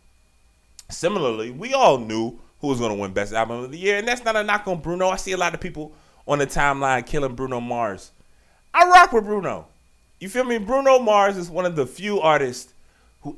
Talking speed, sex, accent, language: 220 wpm, male, American, English